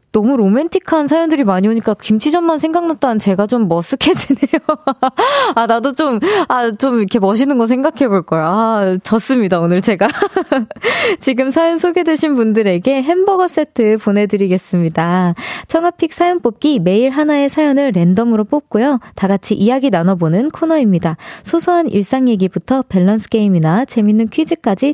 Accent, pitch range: native, 200-290 Hz